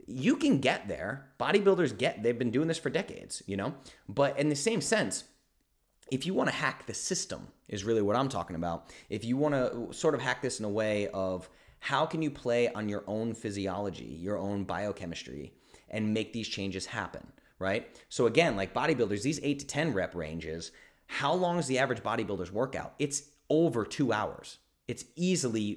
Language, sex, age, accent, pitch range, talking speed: English, male, 30-49, American, 95-130 Hz, 195 wpm